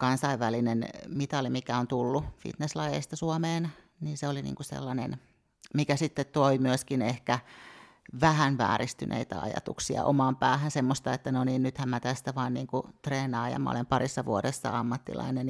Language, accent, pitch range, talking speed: Finnish, native, 130-145 Hz, 145 wpm